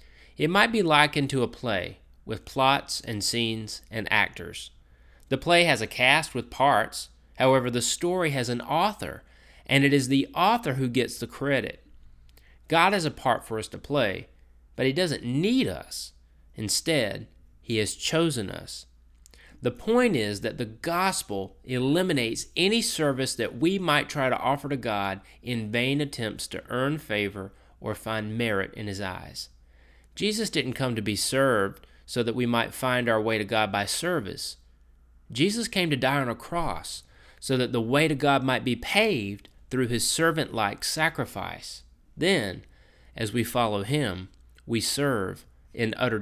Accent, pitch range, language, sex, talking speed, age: American, 95-135 Hz, English, male, 165 wpm, 30-49